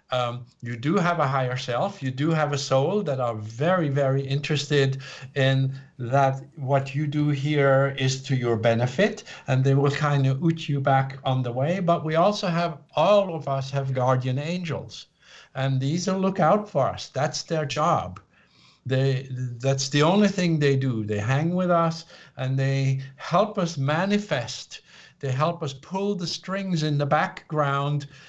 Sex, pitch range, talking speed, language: male, 135-165 Hz, 175 wpm, English